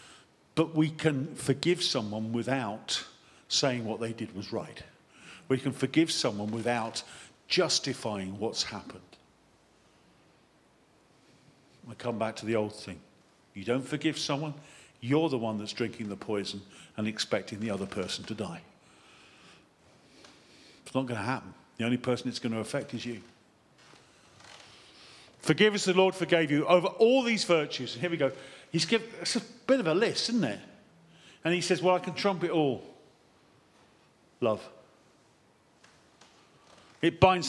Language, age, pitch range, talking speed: English, 50-69, 125-175 Hz, 150 wpm